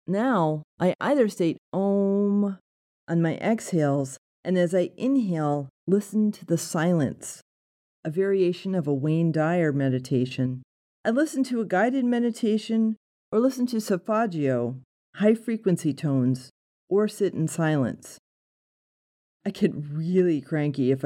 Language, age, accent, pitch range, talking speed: English, 40-59, American, 145-215 Hz, 125 wpm